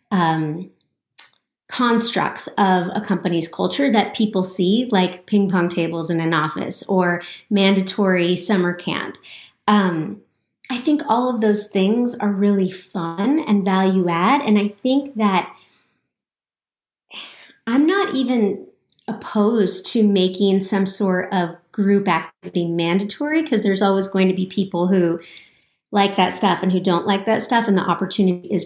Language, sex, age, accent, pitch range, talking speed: English, female, 30-49, American, 180-215 Hz, 145 wpm